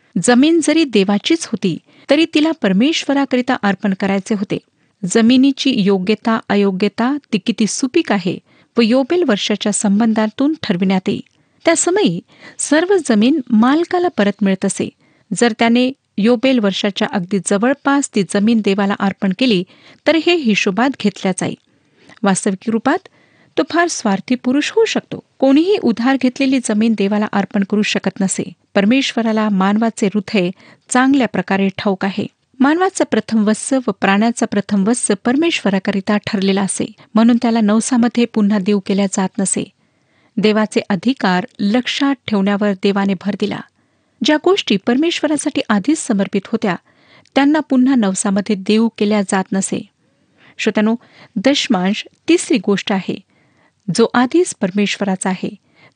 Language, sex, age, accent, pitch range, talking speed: Marathi, female, 40-59, native, 200-265 Hz, 125 wpm